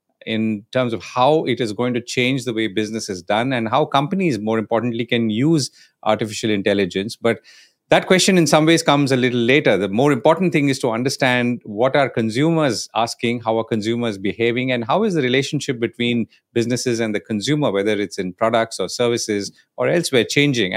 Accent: Indian